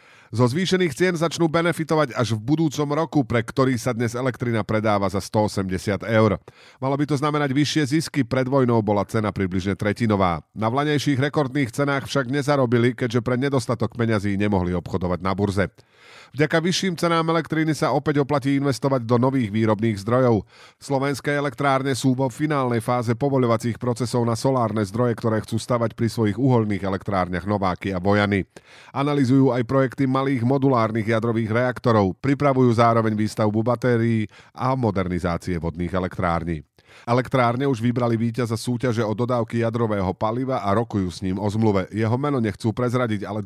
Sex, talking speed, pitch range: male, 155 wpm, 105-135 Hz